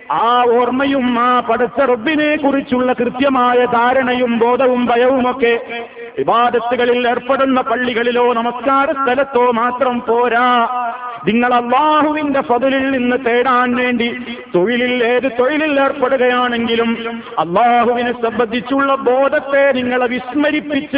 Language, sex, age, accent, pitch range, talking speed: Malayalam, male, 50-69, native, 240-270 Hz, 90 wpm